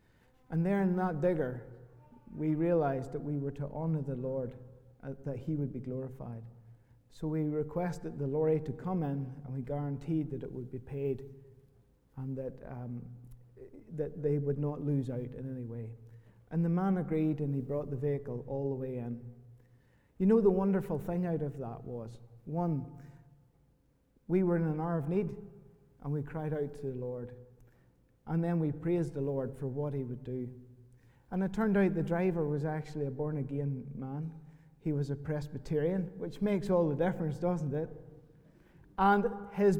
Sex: male